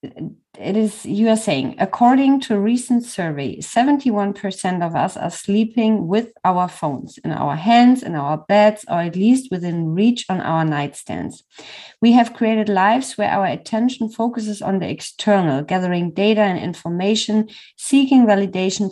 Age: 30-49